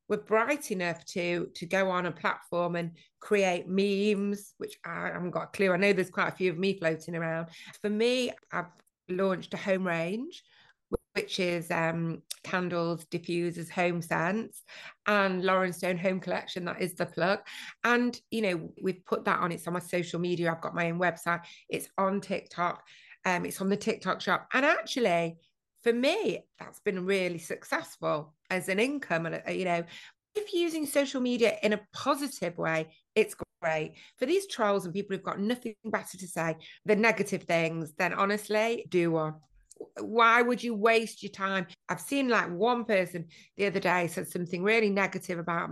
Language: English